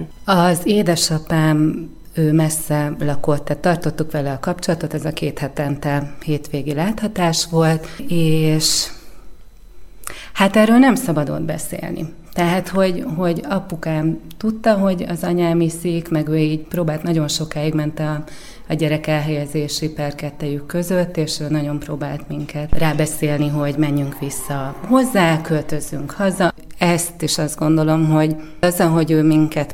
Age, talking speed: 30-49, 135 wpm